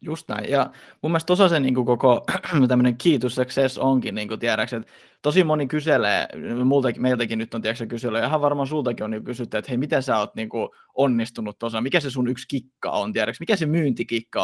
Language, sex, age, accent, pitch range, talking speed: Finnish, male, 20-39, native, 115-145 Hz, 185 wpm